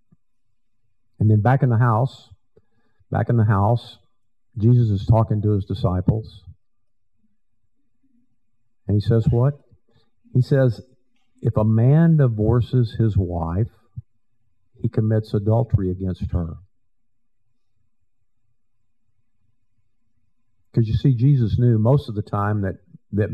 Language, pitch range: English, 100-120 Hz